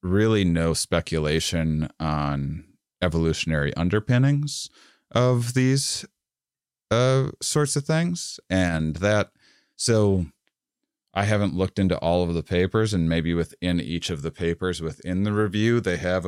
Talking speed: 130 wpm